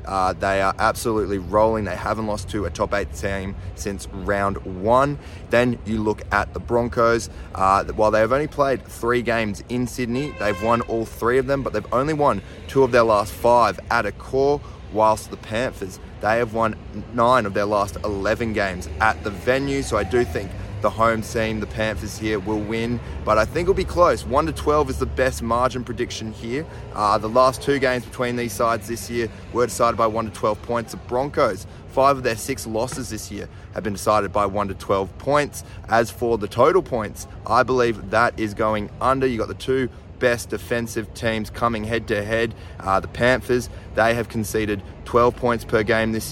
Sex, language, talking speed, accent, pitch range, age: male, English, 205 wpm, Australian, 100-120 Hz, 20-39